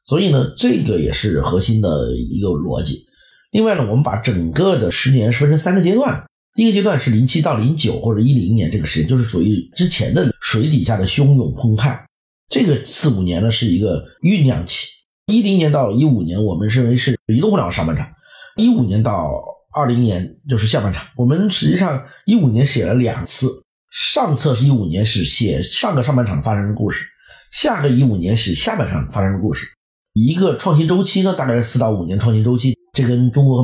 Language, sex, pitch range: Chinese, male, 110-150 Hz